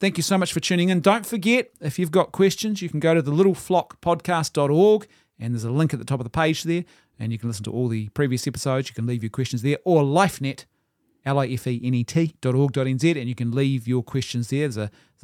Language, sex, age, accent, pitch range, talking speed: English, male, 30-49, Australian, 115-155 Hz, 215 wpm